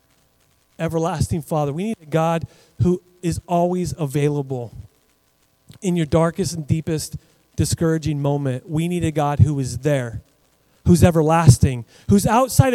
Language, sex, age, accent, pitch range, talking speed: English, male, 30-49, American, 125-195 Hz, 130 wpm